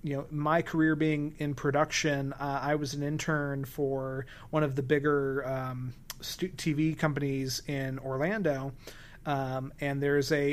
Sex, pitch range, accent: male, 135-155 Hz, American